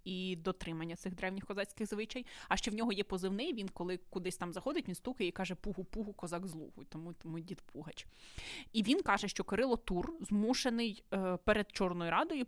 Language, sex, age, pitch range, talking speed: Ukrainian, female, 20-39, 180-225 Hz, 190 wpm